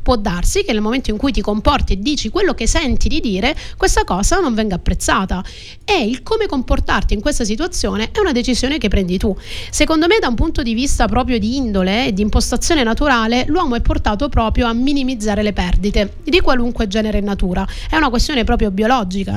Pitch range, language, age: 205-265 Hz, Italian, 30-49